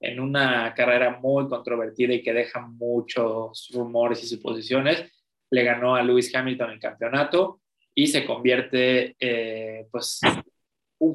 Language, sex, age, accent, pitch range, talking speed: Spanish, male, 20-39, Mexican, 120-135 Hz, 135 wpm